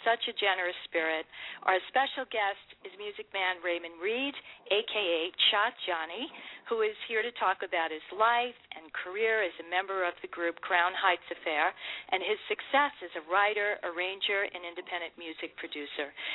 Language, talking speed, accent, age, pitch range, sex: English, 165 wpm, American, 50-69, 180-230 Hz, female